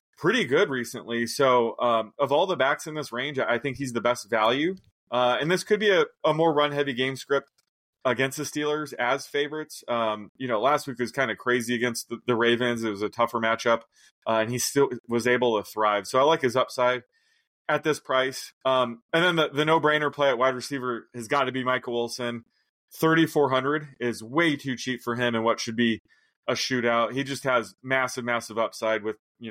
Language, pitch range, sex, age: English, 115-145 Hz, male, 20-39